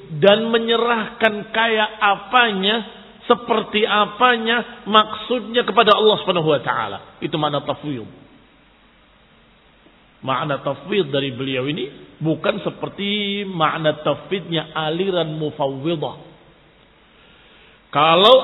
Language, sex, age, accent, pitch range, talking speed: Indonesian, male, 40-59, native, 155-220 Hz, 90 wpm